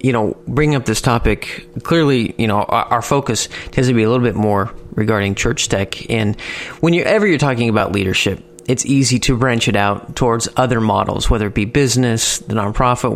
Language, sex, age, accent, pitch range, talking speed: English, male, 30-49, American, 110-135 Hz, 200 wpm